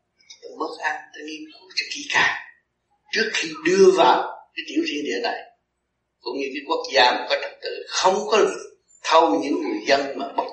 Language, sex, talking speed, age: Vietnamese, male, 200 wpm, 60-79